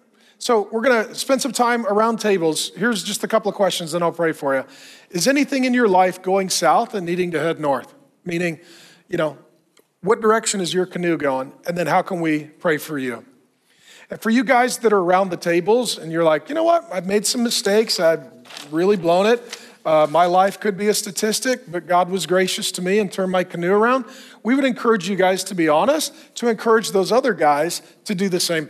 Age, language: 40-59, English